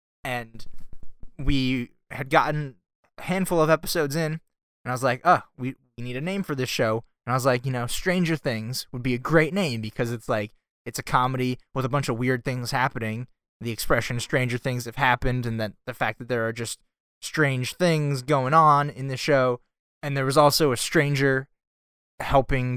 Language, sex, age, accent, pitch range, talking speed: English, male, 20-39, American, 120-145 Hz, 200 wpm